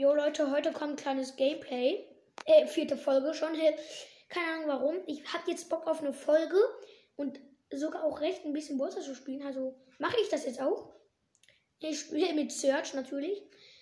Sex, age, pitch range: female, 20-39, 270-340 Hz